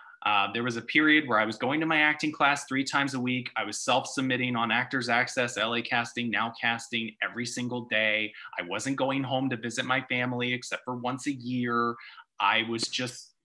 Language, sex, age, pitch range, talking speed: English, male, 30-49, 120-155 Hz, 205 wpm